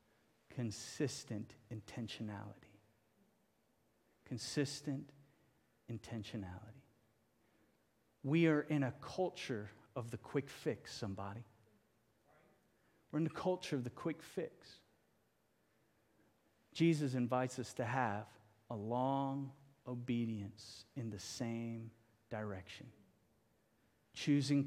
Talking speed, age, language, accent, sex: 85 wpm, 40-59, English, American, male